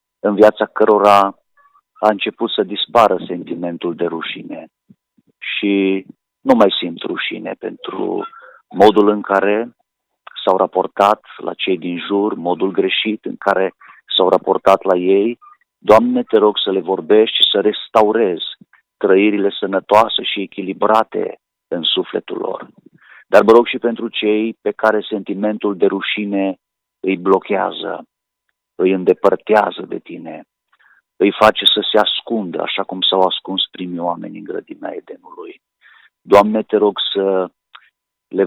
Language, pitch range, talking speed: Romanian, 95-110 Hz, 135 wpm